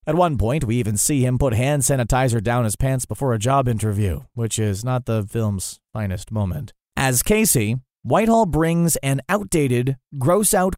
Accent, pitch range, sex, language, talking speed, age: American, 115-155 Hz, male, English, 175 wpm, 30-49